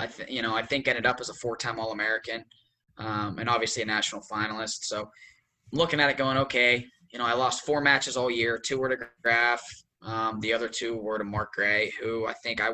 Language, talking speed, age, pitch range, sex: English, 210 wpm, 10-29, 115-135 Hz, male